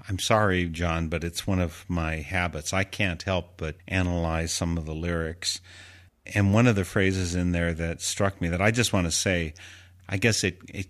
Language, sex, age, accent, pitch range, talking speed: English, male, 50-69, American, 85-100 Hz, 210 wpm